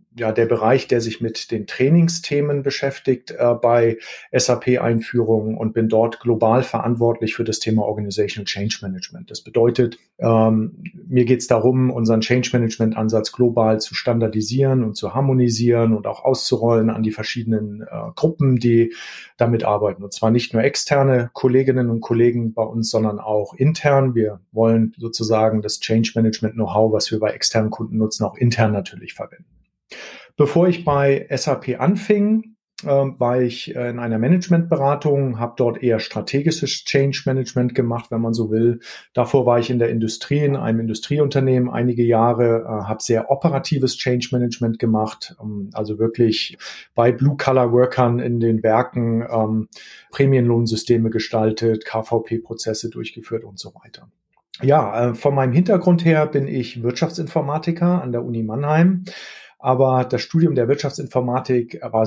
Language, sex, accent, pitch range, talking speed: German, male, German, 115-140 Hz, 140 wpm